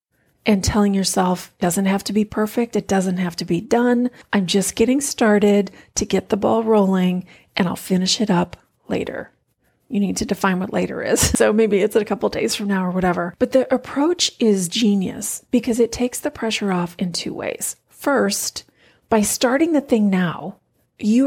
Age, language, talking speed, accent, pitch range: 40-59, English, 195 wpm, American, 195-235 Hz